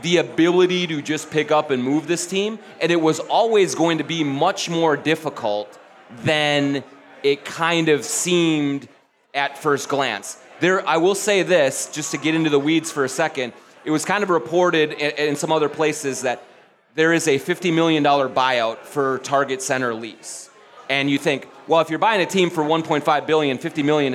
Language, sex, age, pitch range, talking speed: English, male, 30-49, 140-175 Hz, 190 wpm